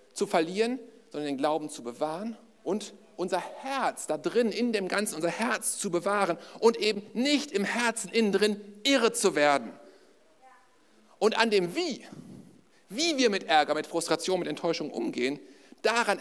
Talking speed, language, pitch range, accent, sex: 160 wpm, German, 165-230 Hz, German, male